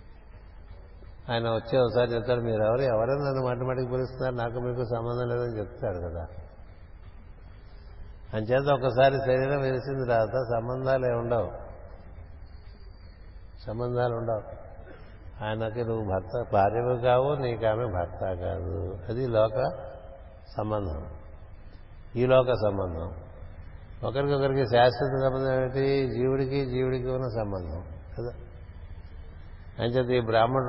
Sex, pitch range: male, 90-120 Hz